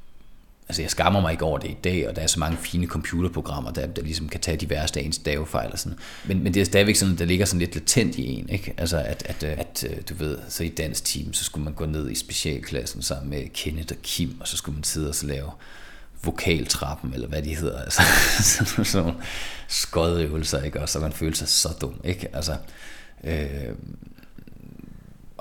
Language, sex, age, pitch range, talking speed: Danish, male, 30-49, 75-90 Hz, 210 wpm